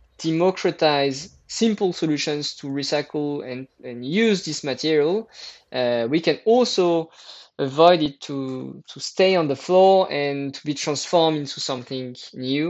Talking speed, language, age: 135 wpm, Slovak, 20-39